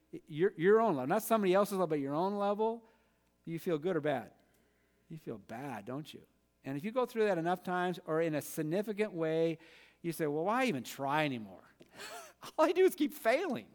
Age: 50-69